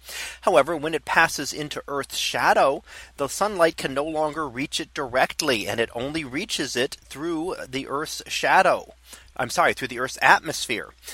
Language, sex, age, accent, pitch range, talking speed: English, male, 30-49, American, 120-165 Hz, 160 wpm